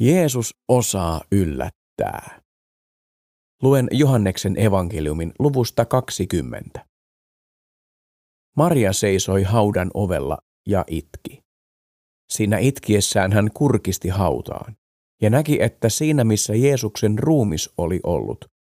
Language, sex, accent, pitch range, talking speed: Finnish, male, native, 90-120 Hz, 90 wpm